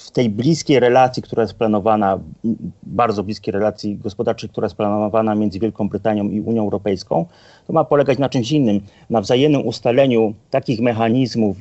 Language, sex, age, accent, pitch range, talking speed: Polish, male, 40-59, native, 110-125 Hz, 160 wpm